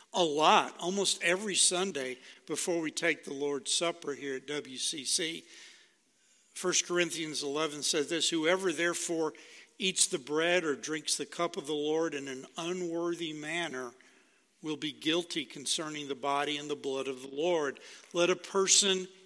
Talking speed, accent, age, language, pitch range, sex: 155 wpm, American, 60-79, English, 140-175 Hz, male